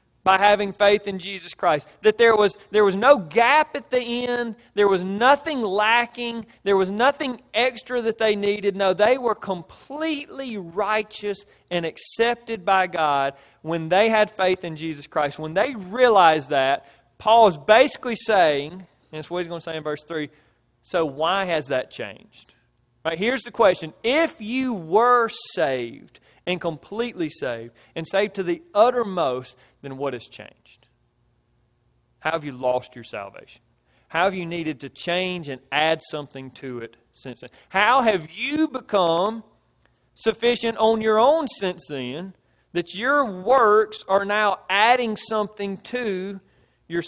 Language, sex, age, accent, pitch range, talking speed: English, male, 30-49, American, 155-225 Hz, 160 wpm